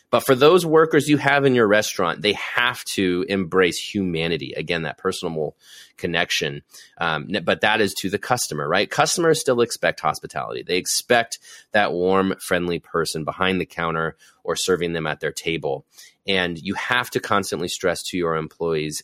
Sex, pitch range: male, 90-120 Hz